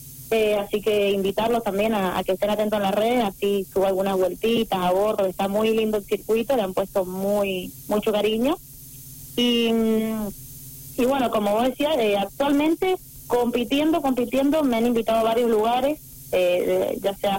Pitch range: 195-240 Hz